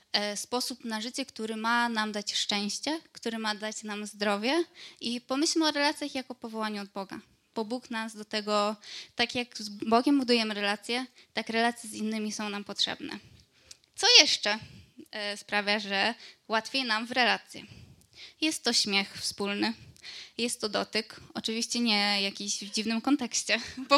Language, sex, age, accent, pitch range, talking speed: Polish, female, 20-39, native, 210-265 Hz, 155 wpm